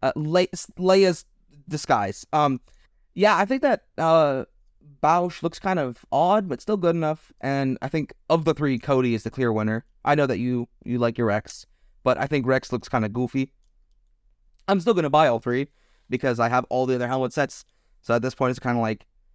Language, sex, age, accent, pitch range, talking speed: English, male, 20-39, American, 110-150 Hz, 210 wpm